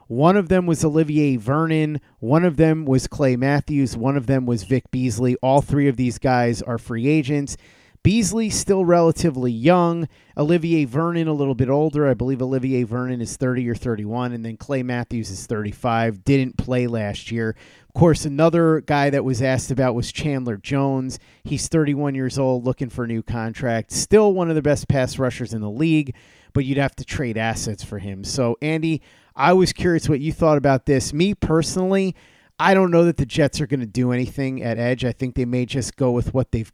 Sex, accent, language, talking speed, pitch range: male, American, English, 205 wpm, 120-150 Hz